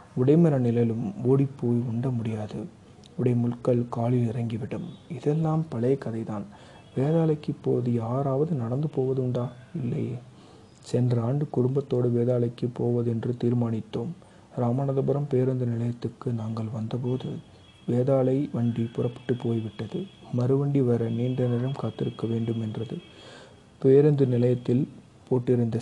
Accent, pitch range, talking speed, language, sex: native, 120-135 Hz, 100 wpm, Tamil, male